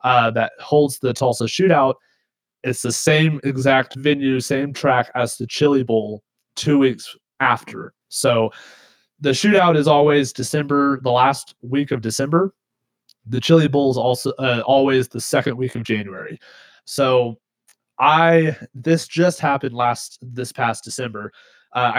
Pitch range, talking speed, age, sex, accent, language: 120-145 Hz, 145 wpm, 20-39, male, American, English